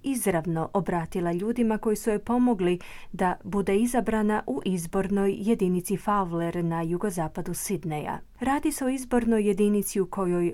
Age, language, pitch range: 30-49, Croatian, 170-220 Hz